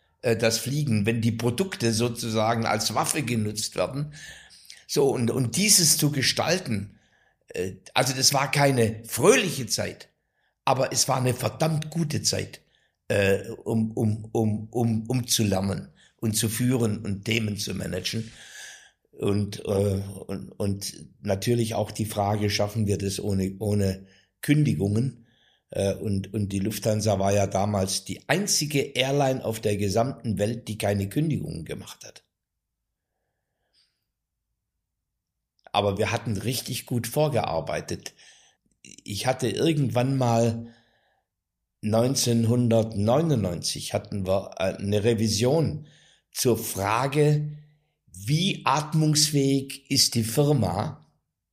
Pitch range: 105-135 Hz